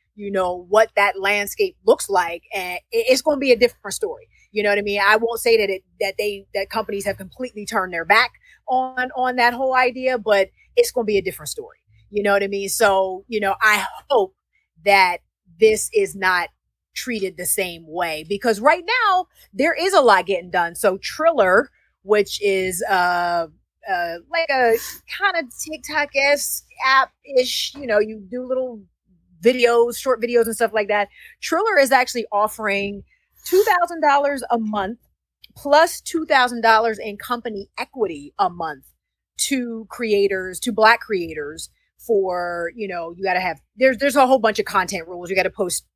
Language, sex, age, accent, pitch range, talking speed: English, female, 30-49, American, 185-255 Hz, 180 wpm